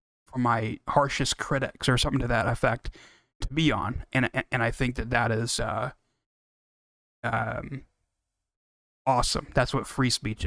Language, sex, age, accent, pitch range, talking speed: English, male, 30-49, American, 115-135 Hz, 155 wpm